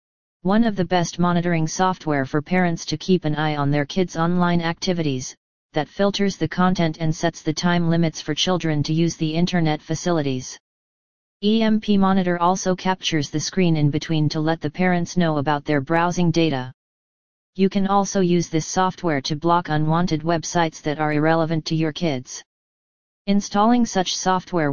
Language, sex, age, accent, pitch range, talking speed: English, female, 40-59, American, 155-180 Hz, 165 wpm